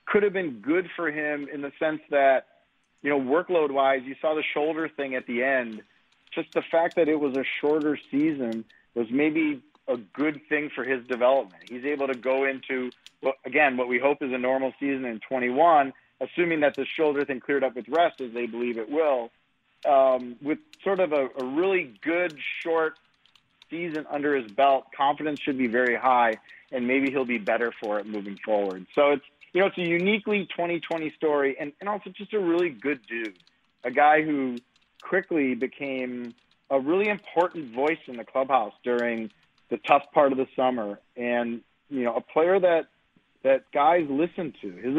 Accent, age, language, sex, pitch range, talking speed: American, 40-59, English, male, 125-160 Hz, 190 wpm